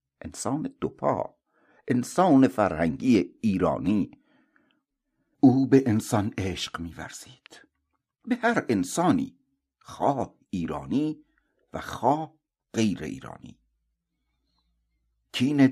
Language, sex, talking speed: Persian, male, 80 wpm